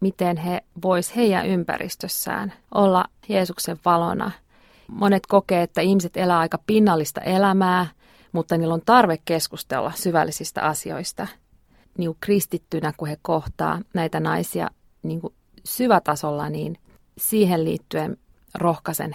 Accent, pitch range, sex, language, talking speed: native, 165-205 Hz, female, Finnish, 115 wpm